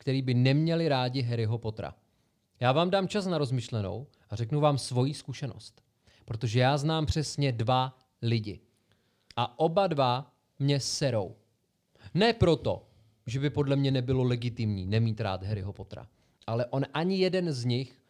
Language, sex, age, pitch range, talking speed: Czech, male, 30-49, 115-150 Hz, 155 wpm